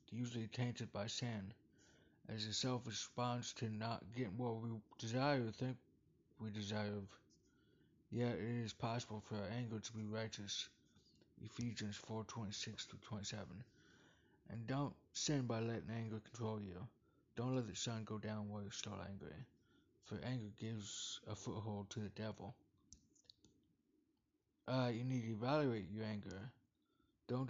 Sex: male